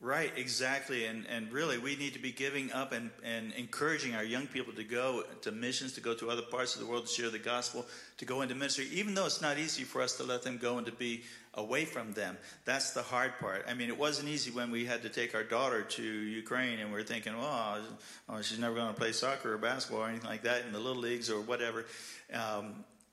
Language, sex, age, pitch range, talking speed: English, male, 50-69, 115-130 Hz, 250 wpm